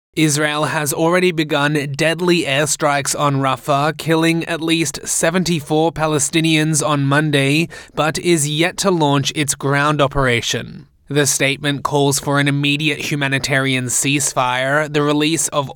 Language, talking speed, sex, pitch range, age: English, 130 wpm, male, 140-160 Hz, 20-39